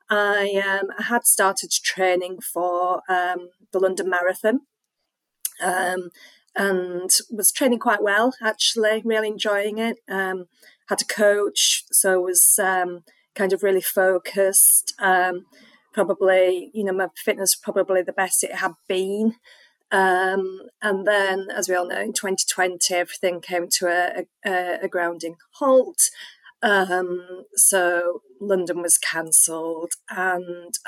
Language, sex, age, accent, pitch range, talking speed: English, female, 30-49, British, 180-210 Hz, 130 wpm